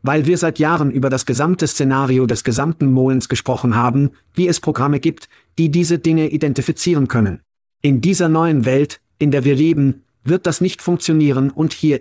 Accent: German